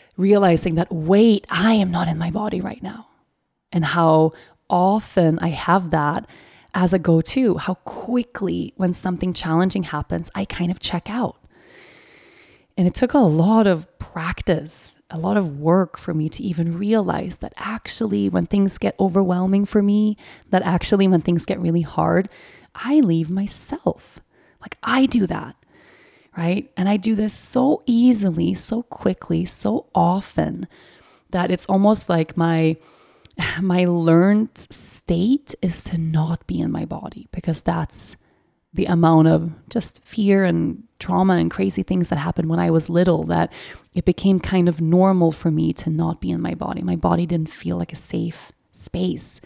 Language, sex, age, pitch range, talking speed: English, female, 20-39, 165-200 Hz, 165 wpm